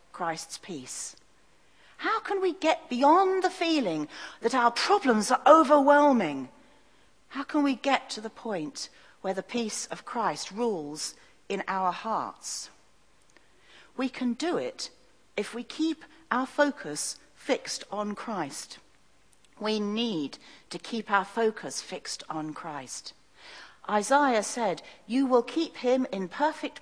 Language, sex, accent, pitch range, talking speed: English, female, British, 210-300 Hz, 130 wpm